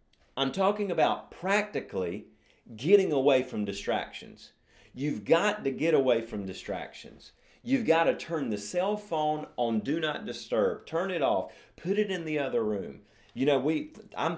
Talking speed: 165 wpm